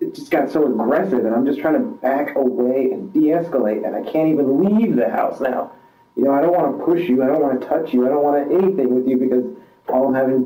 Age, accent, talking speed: 30-49, American, 265 wpm